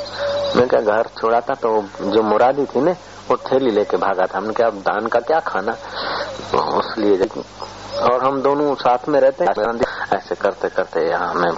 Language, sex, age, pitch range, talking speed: Hindi, male, 50-69, 110-155 Hz, 165 wpm